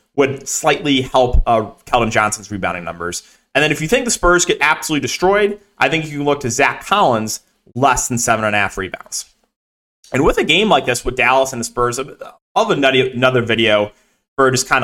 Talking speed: 205 wpm